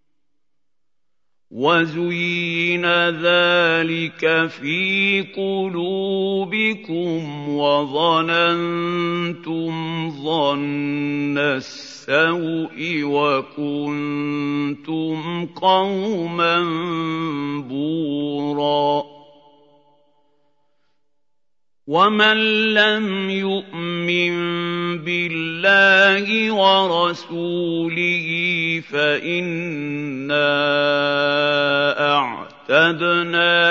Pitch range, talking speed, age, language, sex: 145-175 Hz, 30 wpm, 50-69, Arabic, male